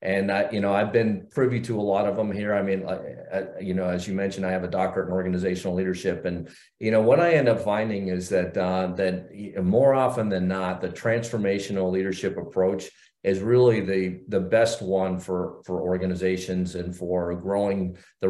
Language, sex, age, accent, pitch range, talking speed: English, male, 40-59, American, 95-105 Hz, 205 wpm